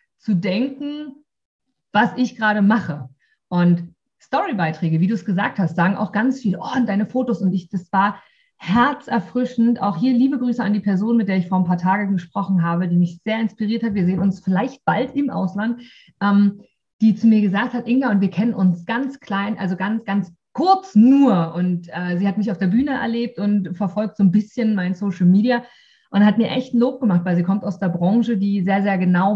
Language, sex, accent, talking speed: German, female, German, 215 wpm